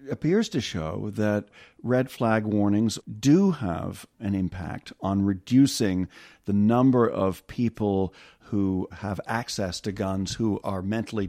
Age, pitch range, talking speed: 50-69, 95-130 Hz, 135 wpm